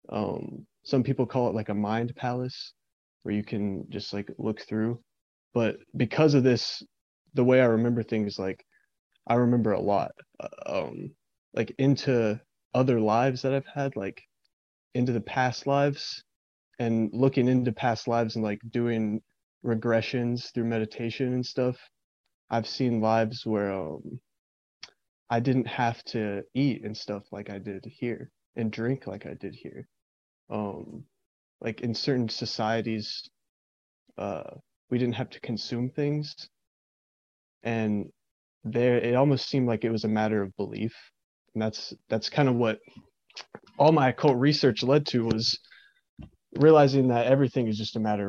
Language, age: English, 20-39